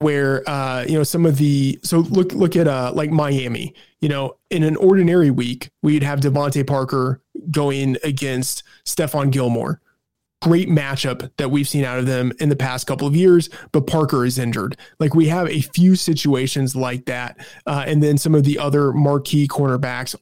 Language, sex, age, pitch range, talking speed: English, male, 20-39, 135-160 Hz, 185 wpm